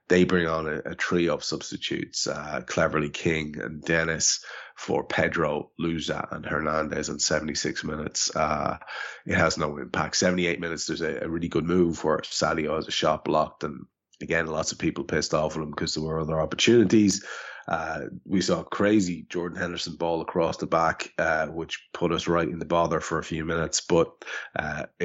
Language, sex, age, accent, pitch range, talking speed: English, male, 20-39, Irish, 80-90 Hz, 190 wpm